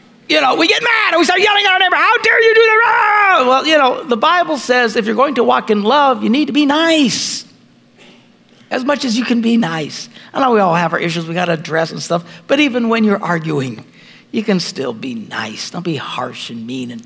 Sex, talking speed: male, 250 wpm